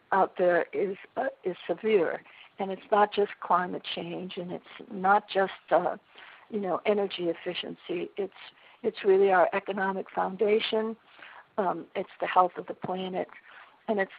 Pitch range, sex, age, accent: 195-235 Hz, female, 60-79, American